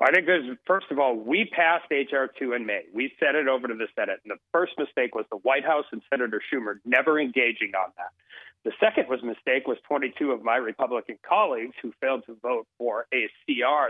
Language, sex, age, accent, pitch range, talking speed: English, male, 40-59, American, 125-180 Hz, 215 wpm